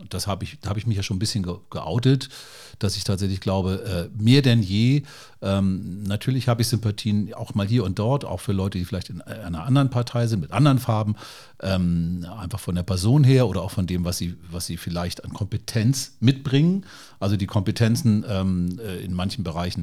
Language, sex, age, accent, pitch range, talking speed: German, male, 40-59, German, 100-125 Hz, 195 wpm